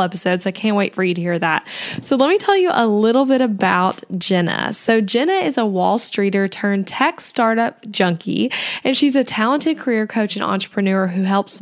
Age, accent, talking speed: 10-29, American, 205 wpm